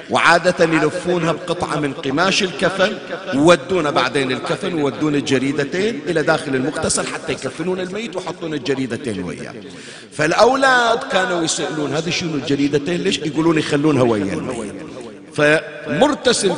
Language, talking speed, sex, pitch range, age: Arabic, 115 wpm, male, 140-180 Hz, 50-69